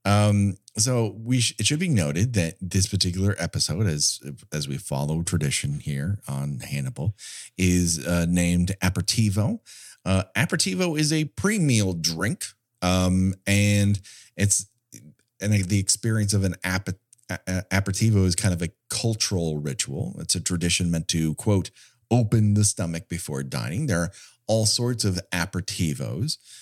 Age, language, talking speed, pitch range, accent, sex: 30-49, English, 140 wpm, 90-115 Hz, American, male